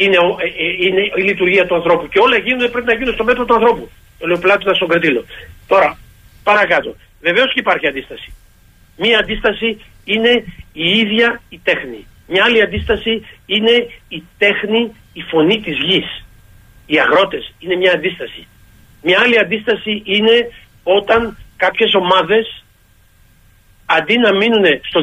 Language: Greek